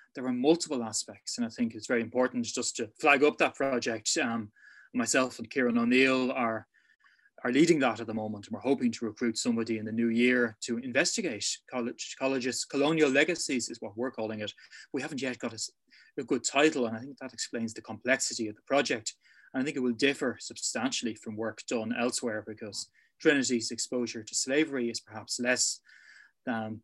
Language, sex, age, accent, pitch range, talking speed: English, male, 20-39, Irish, 120-155 Hz, 195 wpm